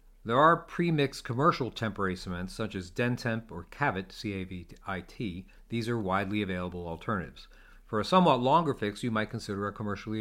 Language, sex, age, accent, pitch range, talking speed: English, male, 50-69, American, 95-125 Hz, 160 wpm